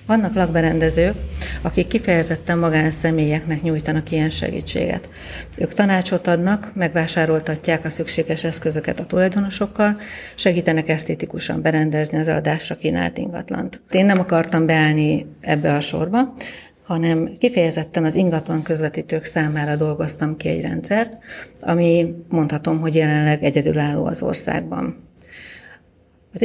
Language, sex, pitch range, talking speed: Hungarian, female, 155-180 Hz, 110 wpm